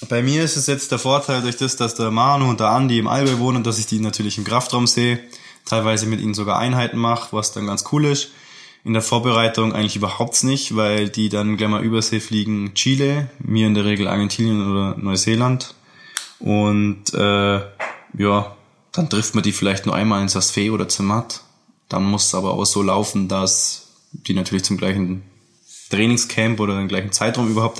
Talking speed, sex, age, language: 195 wpm, male, 20-39, German